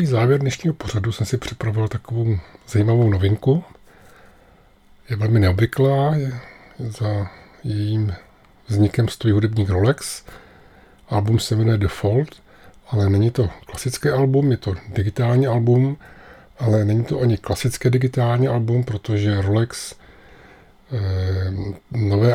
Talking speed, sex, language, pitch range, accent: 115 wpm, male, Czech, 105-125 Hz, native